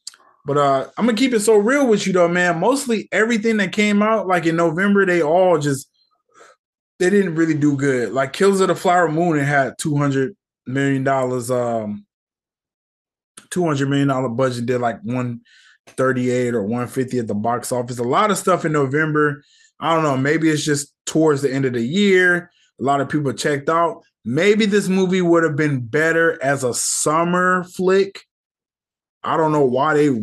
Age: 20-39